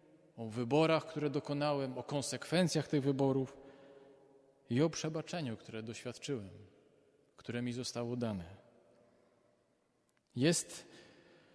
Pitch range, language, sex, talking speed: 125-150 Hz, Polish, male, 95 wpm